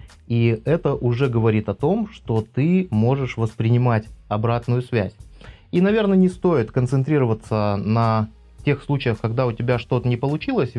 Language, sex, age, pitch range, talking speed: Russian, male, 20-39, 110-140 Hz, 145 wpm